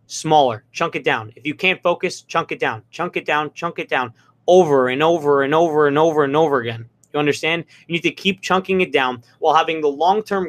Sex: male